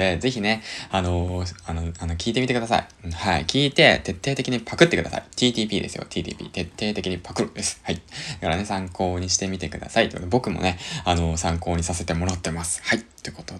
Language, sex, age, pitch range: Japanese, male, 20-39, 85-105 Hz